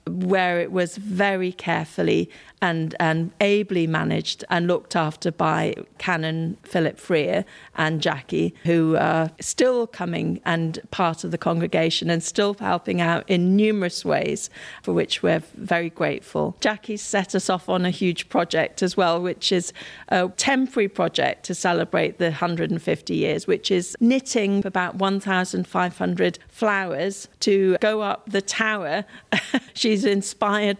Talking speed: 140 wpm